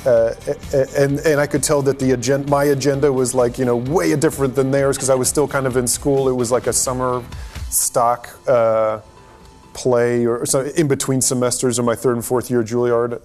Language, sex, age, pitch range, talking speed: English, male, 30-49, 115-135 Hz, 215 wpm